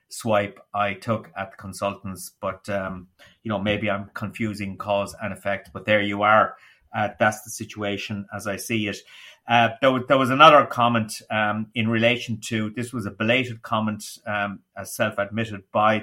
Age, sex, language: 30-49, male, English